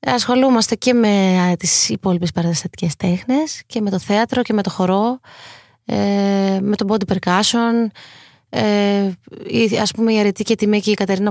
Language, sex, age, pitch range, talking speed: Greek, female, 20-39, 180-230 Hz, 155 wpm